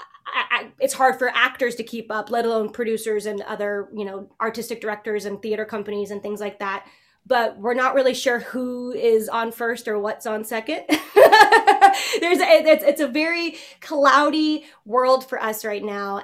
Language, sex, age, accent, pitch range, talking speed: English, female, 20-39, American, 215-265 Hz, 185 wpm